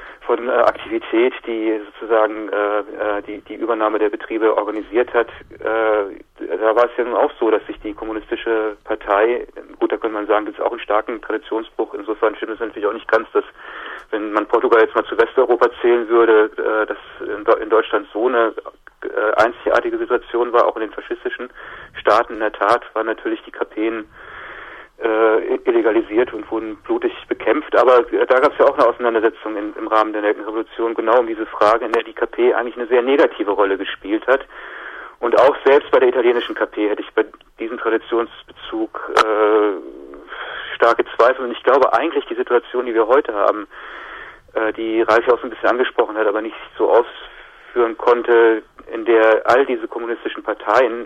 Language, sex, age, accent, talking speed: German, male, 40-59, German, 175 wpm